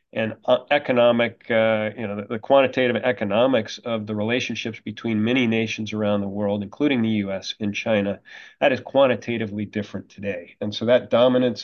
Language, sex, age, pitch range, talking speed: English, male, 40-59, 110-130 Hz, 170 wpm